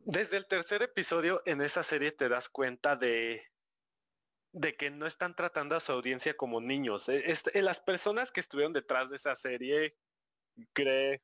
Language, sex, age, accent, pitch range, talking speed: Spanish, male, 30-49, Mexican, 135-195 Hz, 160 wpm